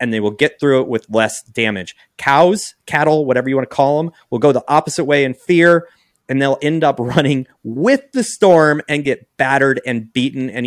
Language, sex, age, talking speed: English, male, 30-49, 215 wpm